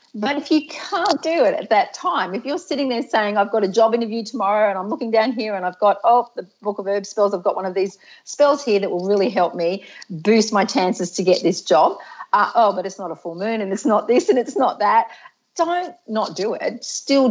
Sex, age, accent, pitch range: female, 40-59, Australian, 195-250 Hz